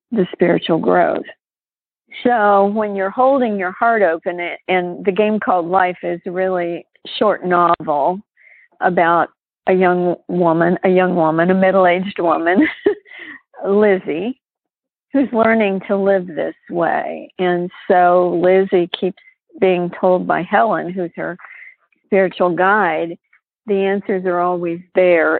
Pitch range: 180-210 Hz